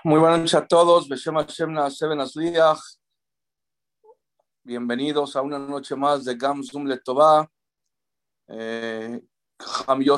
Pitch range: 130-145 Hz